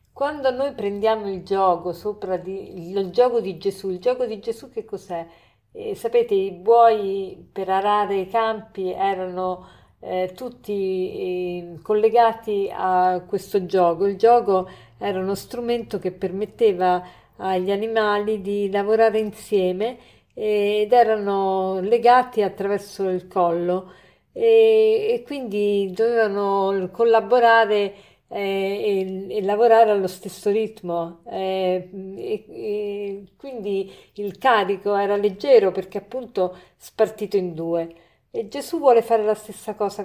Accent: native